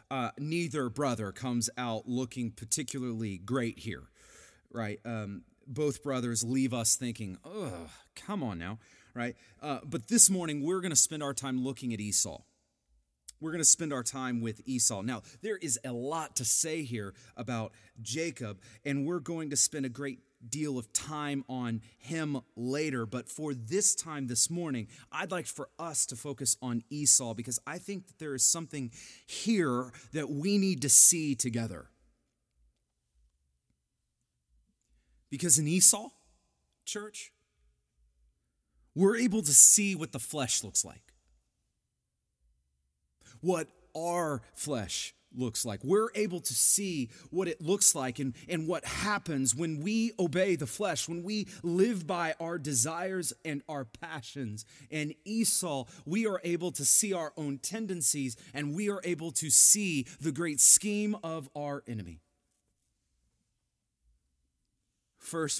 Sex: male